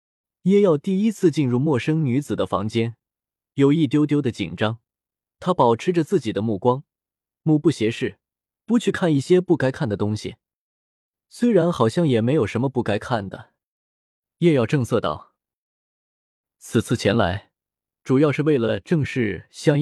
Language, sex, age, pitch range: Chinese, male, 20-39, 110-155 Hz